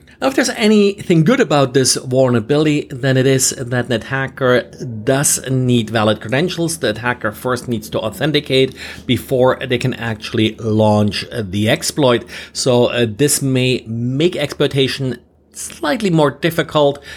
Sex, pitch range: male, 115-140 Hz